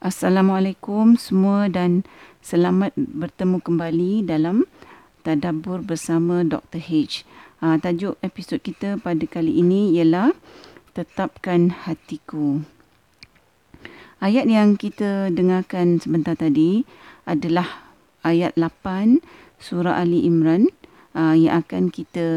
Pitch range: 165-205 Hz